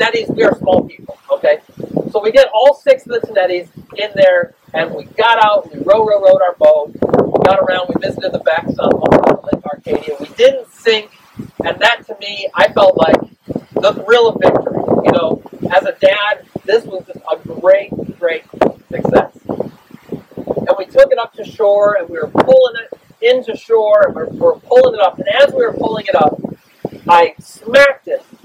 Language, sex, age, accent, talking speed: English, male, 40-59, American, 190 wpm